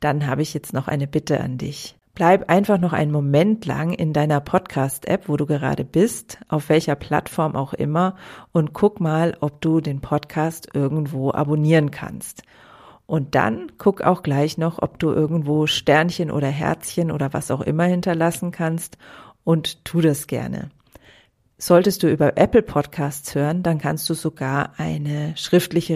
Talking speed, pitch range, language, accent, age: 165 wpm, 140-165 Hz, German, German, 40-59